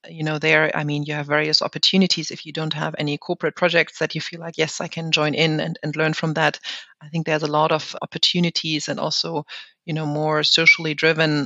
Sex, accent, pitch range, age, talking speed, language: female, German, 150-165 Hz, 30-49, 230 wpm, English